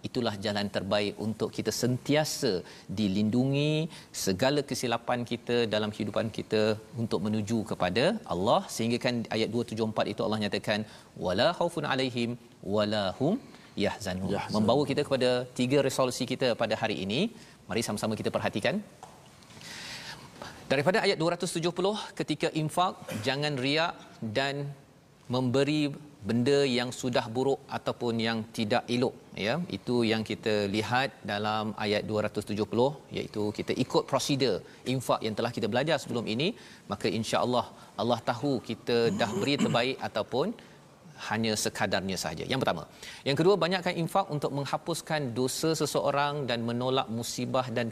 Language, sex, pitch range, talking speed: Malayalam, male, 110-140 Hz, 130 wpm